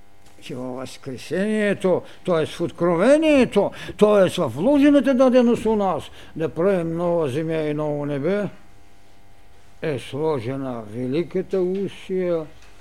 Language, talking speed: Bulgarian, 105 wpm